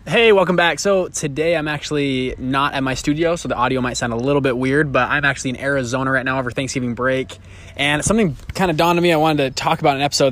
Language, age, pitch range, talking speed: English, 20-39, 125-150 Hz, 255 wpm